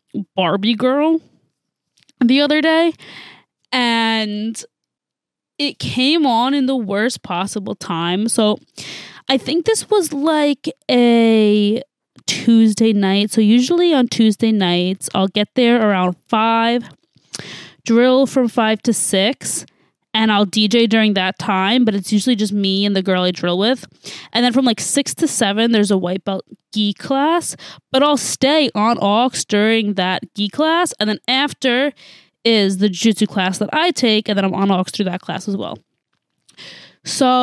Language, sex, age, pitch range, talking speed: English, female, 20-39, 205-260 Hz, 155 wpm